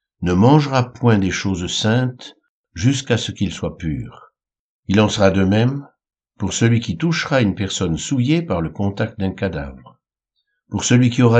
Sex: male